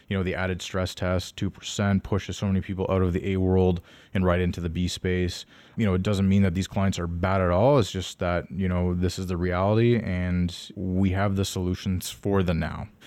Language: English